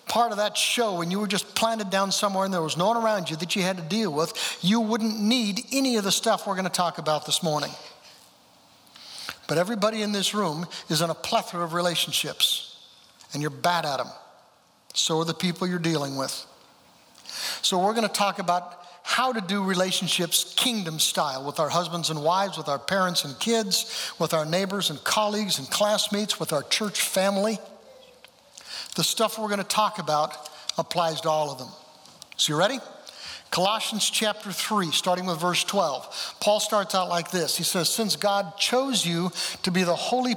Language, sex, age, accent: English, male, 60-79, American